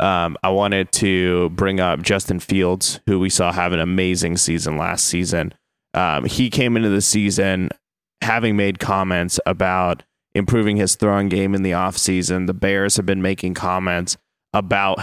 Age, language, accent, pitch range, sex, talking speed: 20-39, English, American, 90-100 Hz, male, 170 wpm